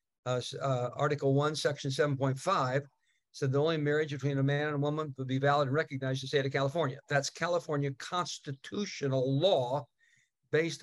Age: 60-79